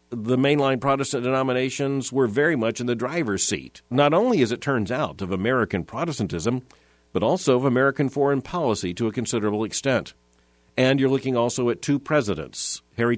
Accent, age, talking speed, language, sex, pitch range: American, 50-69, 175 wpm, English, male, 110-145 Hz